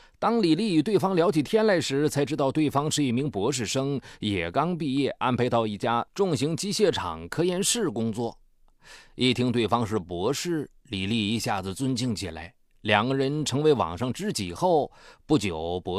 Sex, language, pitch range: male, Chinese, 110-145 Hz